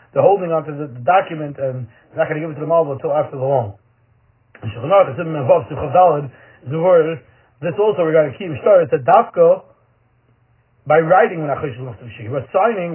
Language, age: English, 30-49